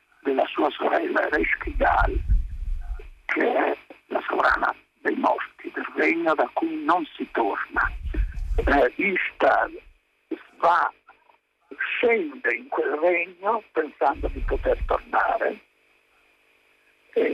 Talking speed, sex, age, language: 100 wpm, male, 60-79, Italian